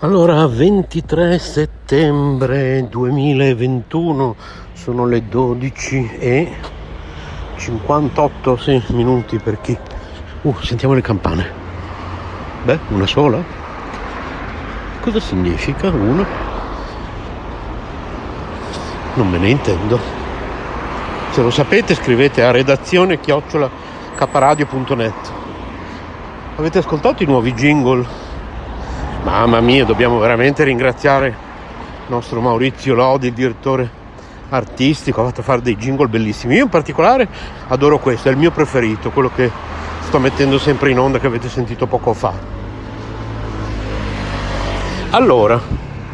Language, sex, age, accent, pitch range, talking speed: Italian, male, 60-79, native, 105-140 Hz, 105 wpm